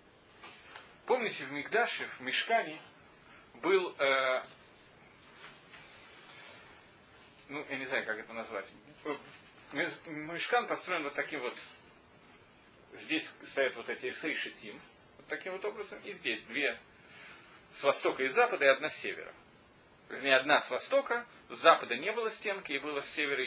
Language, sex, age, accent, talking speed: Russian, male, 30-49, native, 135 wpm